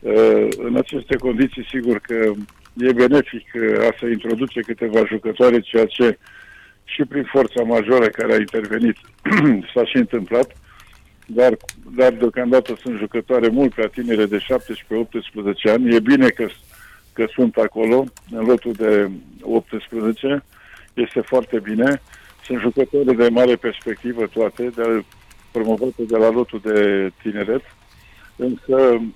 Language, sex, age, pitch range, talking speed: Romanian, male, 50-69, 105-125 Hz, 130 wpm